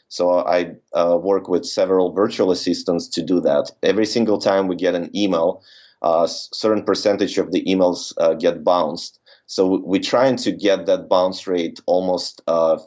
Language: English